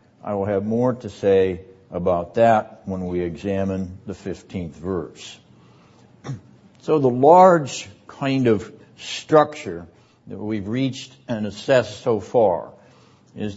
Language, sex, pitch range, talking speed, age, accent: English, male, 100-125 Hz, 125 wpm, 60-79, American